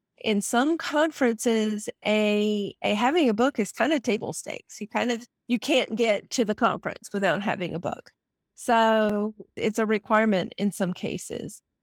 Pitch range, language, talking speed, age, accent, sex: 210-245 Hz, English, 165 wpm, 30-49, American, female